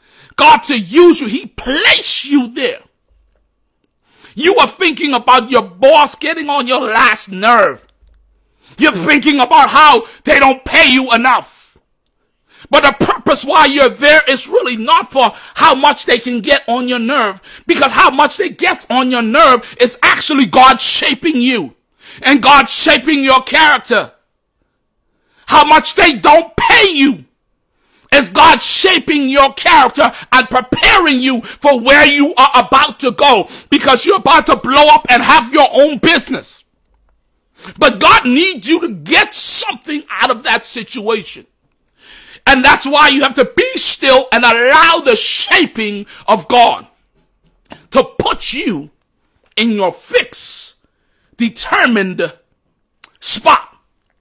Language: English